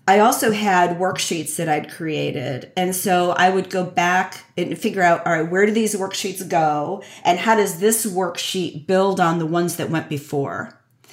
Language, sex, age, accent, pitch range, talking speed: English, female, 40-59, American, 160-195 Hz, 190 wpm